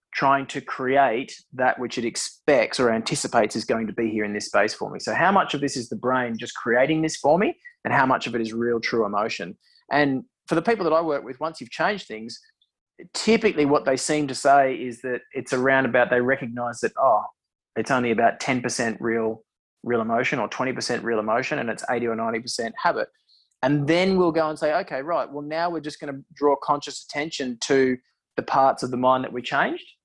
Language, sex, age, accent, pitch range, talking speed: English, male, 20-39, Australian, 125-160 Hz, 220 wpm